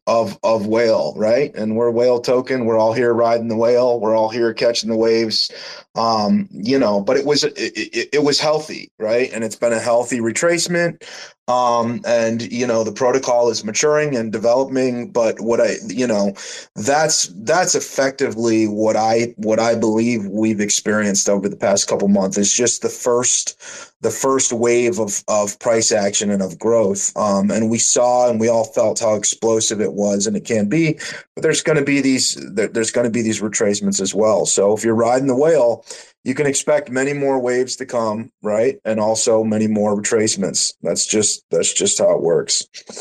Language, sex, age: English, male, 30-49